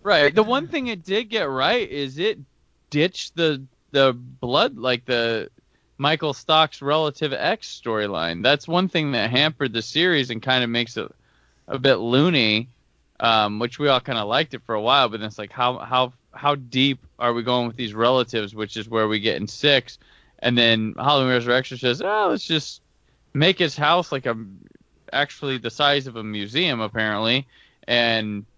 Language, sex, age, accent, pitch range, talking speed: English, male, 20-39, American, 110-140 Hz, 185 wpm